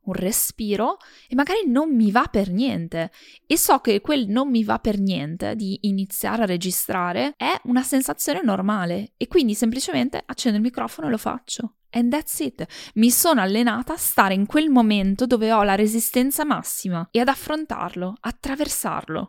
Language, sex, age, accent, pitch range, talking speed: Italian, female, 20-39, native, 180-245 Hz, 170 wpm